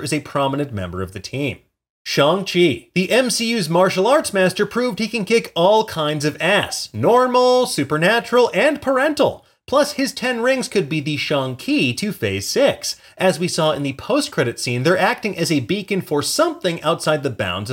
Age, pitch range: 30-49, 130-215 Hz